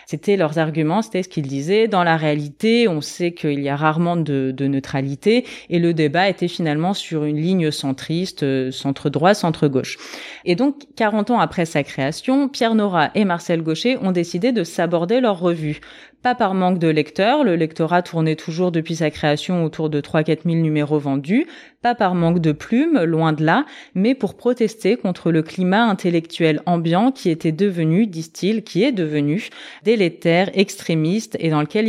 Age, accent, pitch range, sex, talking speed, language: 30-49, French, 155-210 Hz, female, 180 wpm, French